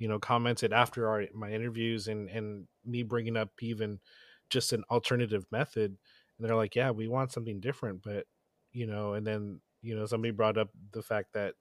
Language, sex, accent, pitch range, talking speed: English, male, American, 105-120 Hz, 195 wpm